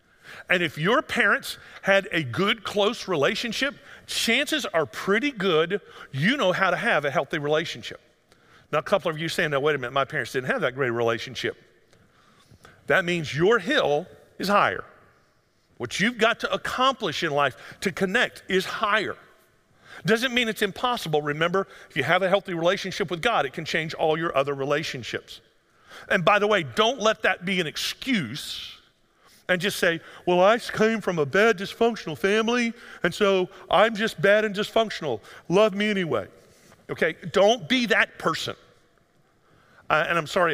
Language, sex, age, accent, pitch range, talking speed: English, male, 50-69, American, 160-215 Hz, 170 wpm